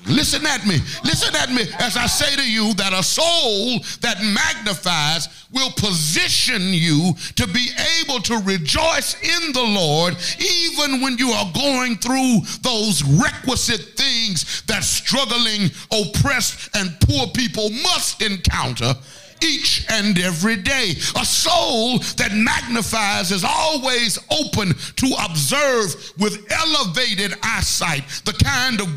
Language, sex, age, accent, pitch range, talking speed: English, male, 50-69, American, 185-265 Hz, 130 wpm